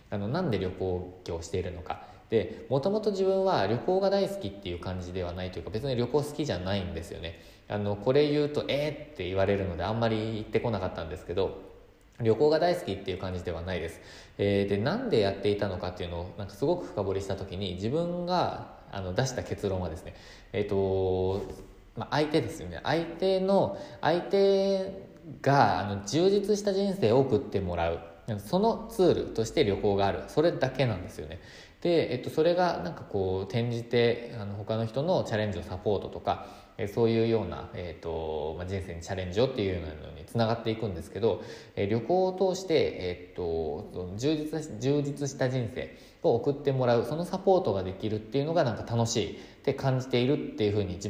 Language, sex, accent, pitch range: Japanese, male, native, 95-145 Hz